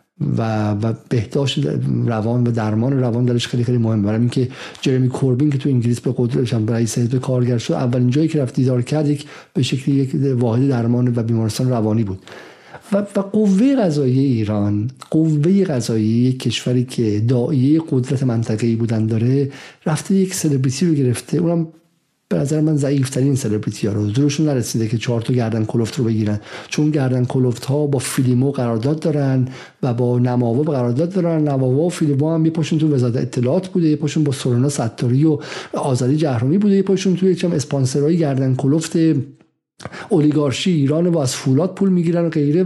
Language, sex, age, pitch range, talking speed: Persian, male, 50-69, 125-160 Hz, 175 wpm